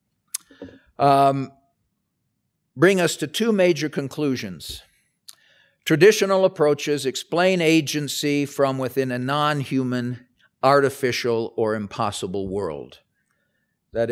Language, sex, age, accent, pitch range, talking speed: English, male, 50-69, American, 115-145 Hz, 85 wpm